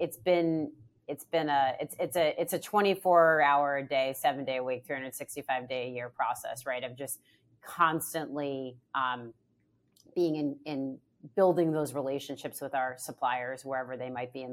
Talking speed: 190 wpm